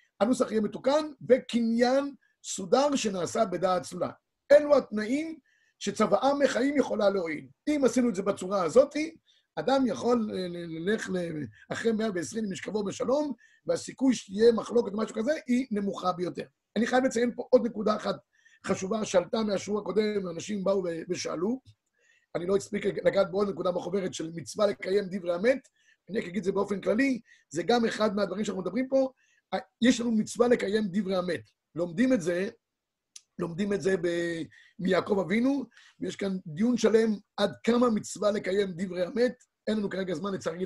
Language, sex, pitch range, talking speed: Hebrew, male, 190-250 Hz, 160 wpm